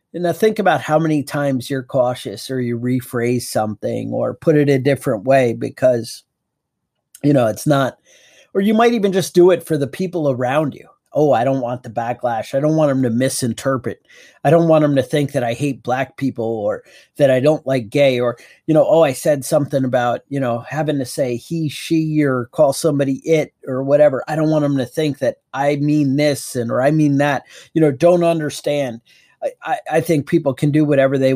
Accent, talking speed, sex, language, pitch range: American, 215 wpm, male, English, 125-150 Hz